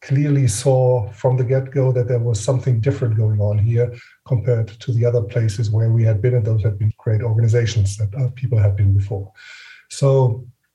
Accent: German